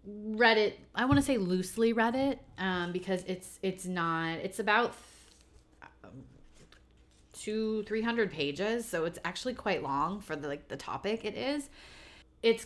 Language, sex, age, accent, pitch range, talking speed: English, female, 30-49, American, 160-200 Hz, 155 wpm